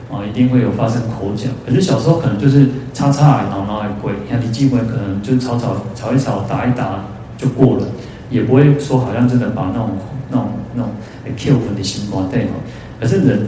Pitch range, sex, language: 110-135 Hz, male, Chinese